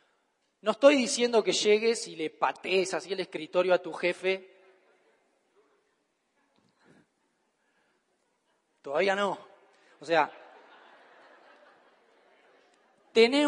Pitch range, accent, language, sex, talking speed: 180-240 Hz, Argentinian, Spanish, male, 85 wpm